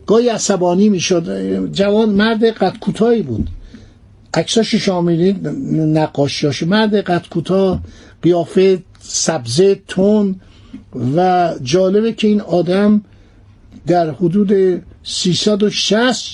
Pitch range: 160-210 Hz